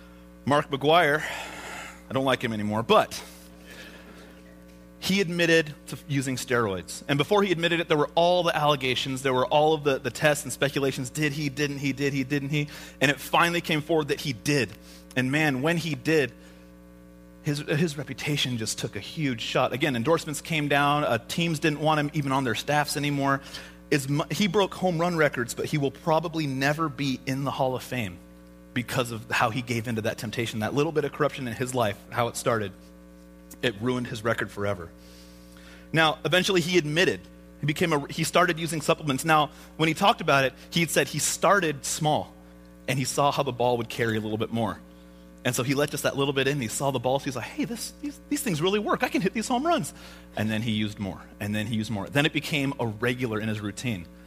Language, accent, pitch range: English, American, 105-150 Hz